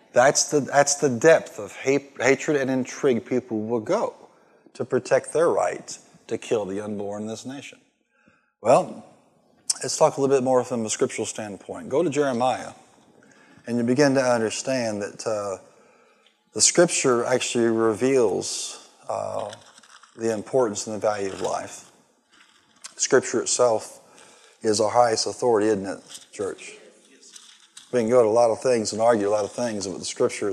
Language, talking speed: English, 165 wpm